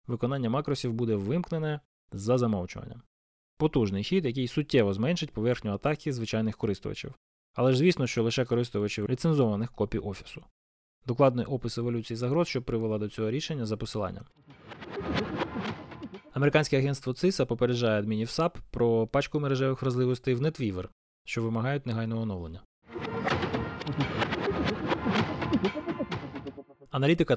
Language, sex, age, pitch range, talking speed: Ukrainian, male, 20-39, 110-140 Hz, 115 wpm